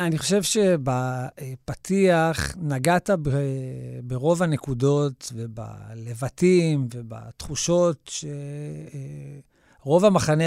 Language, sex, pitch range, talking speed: Hebrew, male, 130-155 Hz, 65 wpm